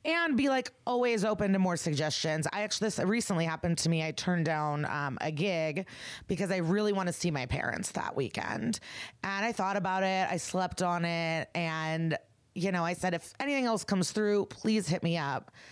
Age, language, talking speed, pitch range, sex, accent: 30-49, English, 205 wpm, 155-185 Hz, female, American